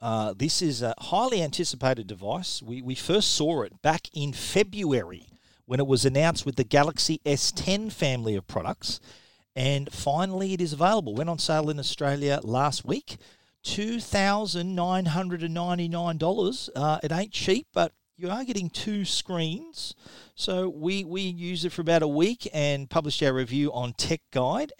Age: 40-59